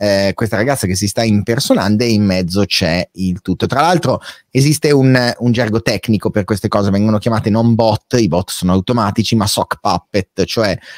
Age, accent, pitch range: 30-49, native, 100-130 Hz